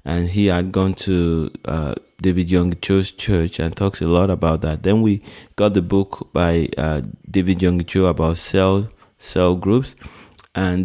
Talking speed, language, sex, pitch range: 170 wpm, English, male, 90-105 Hz